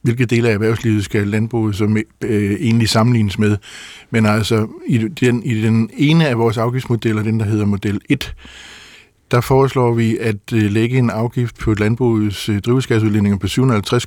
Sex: male